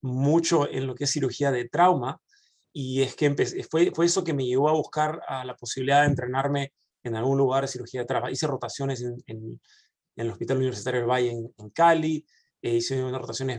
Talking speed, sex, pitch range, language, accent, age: 220 wpm, male, 125-155 Hz, English, Argentinian, 20-39